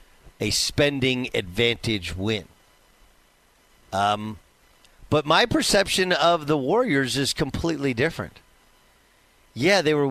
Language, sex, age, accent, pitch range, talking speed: English, male, 50-69, American, 110-170 Hz, 100 wpm